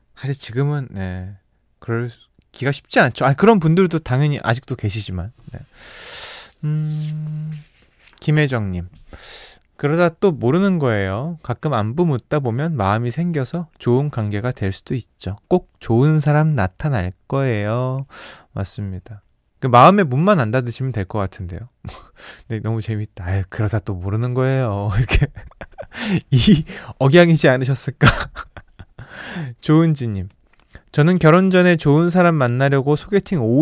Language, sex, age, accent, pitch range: Korean, male, 20-39, native, 110-170 Hz